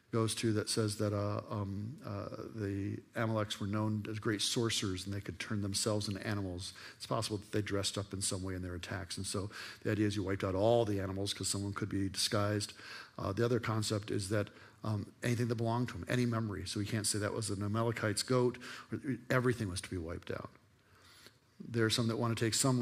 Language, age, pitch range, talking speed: English, 50-69, 105-115 Hz, 230 wpm